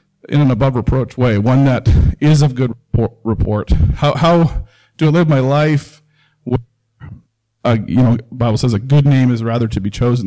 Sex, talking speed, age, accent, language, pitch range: male, 195 wpm, 40-59, American, English, 115-145 Hz